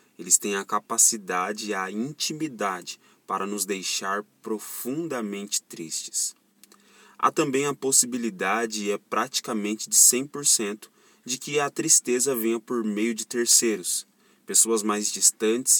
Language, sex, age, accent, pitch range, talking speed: Portuguese, male, 20-39, Brazilian, 105-125 Hz, 125 wpm